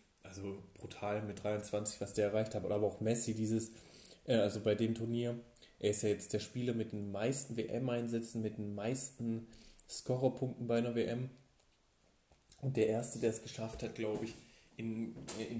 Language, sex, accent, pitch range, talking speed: German, male, German, 110-130 Hz, 170 wpm